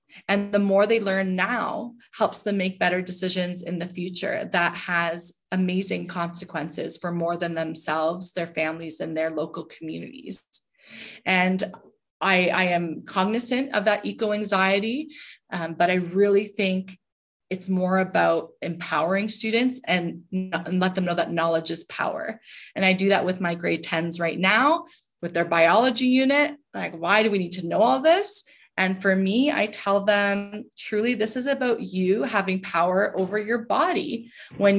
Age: 30-49